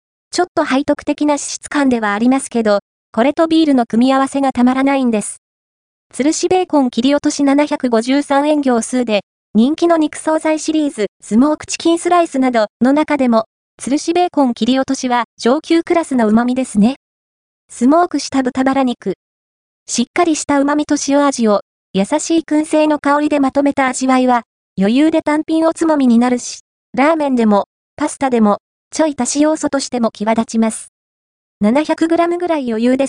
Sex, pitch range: female, 230-305 Hz